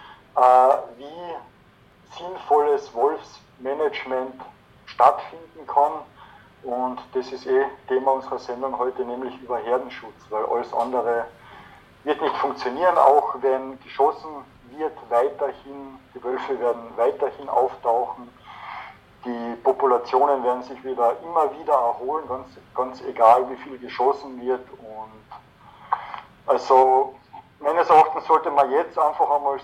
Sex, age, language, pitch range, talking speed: male, 50-69, German, 120-140 Hz, 115 wpm